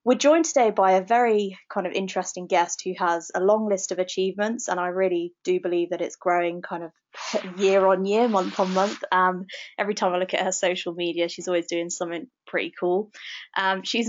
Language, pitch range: English, 175-200 Hz